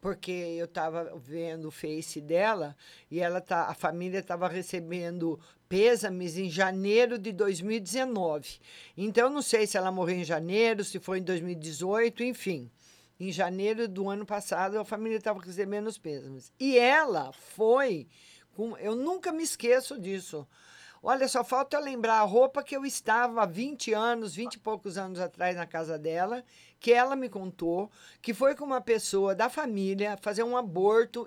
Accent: Brazilian